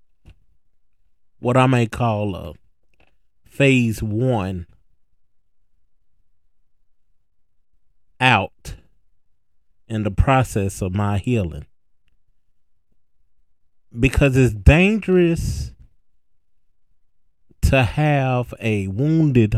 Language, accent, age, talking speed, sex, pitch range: English, American, 30-49, 65 wpm, male, 95-135 Hz